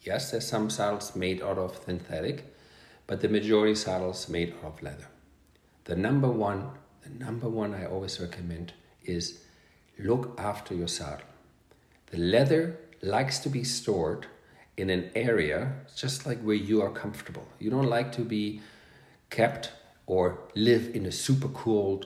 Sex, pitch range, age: male, 95-125 Hz, 50-69